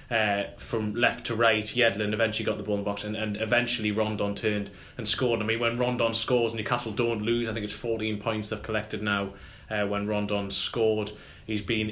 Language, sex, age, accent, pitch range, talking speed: English, male, 20-39, British, 105-115 Hz, 205 wpm